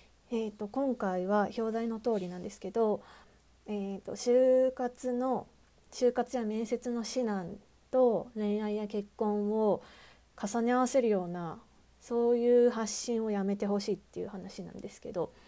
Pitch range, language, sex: 185-240 Hz, Japanese, female